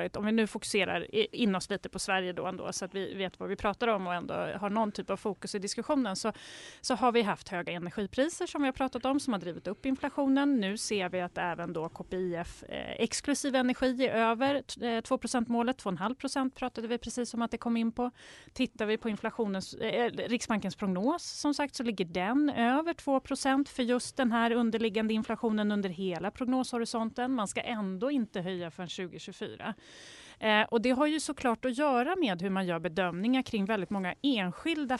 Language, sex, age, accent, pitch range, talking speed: Swedish, female, 30-49, native, 190-250 Hz, 200 wpm